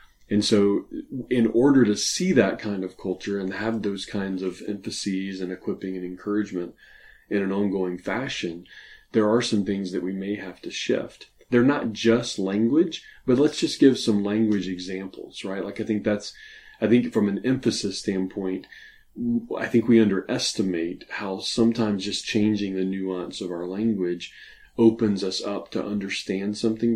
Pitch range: 95-110 Hz